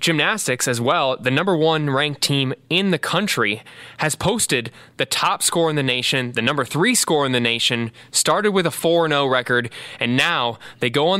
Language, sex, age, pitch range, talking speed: English, male, 20-39, 125-150 Hz, 195 wpm